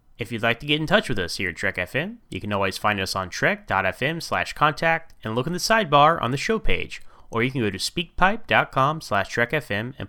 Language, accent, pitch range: English, American, 110-165 Hz